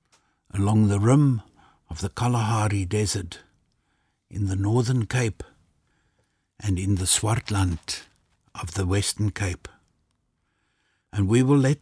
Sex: male